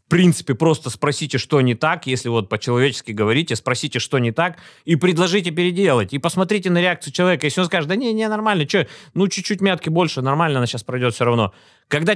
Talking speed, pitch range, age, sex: 200 wpm, 130-180 Hz, 30-49, male